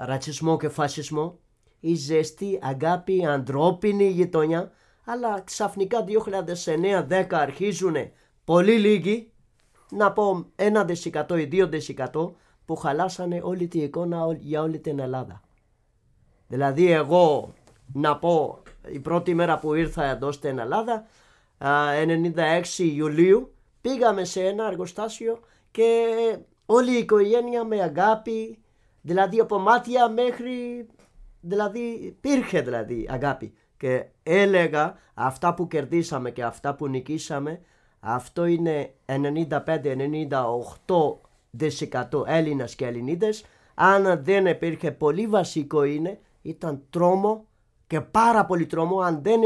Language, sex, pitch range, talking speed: Greek, male, 145-195 Hz, 105 wpm